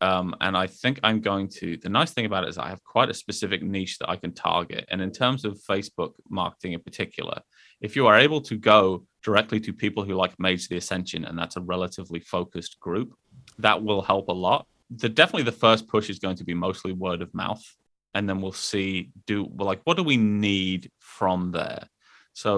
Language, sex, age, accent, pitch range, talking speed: English, male, 20-39, British, 90-105 Hz, 220 wpm